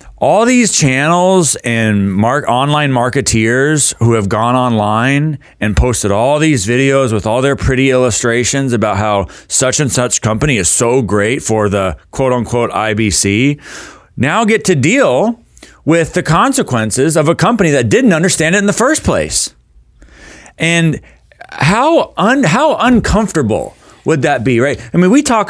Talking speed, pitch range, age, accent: 150 wpm, 110-150 Hz, 30-49, American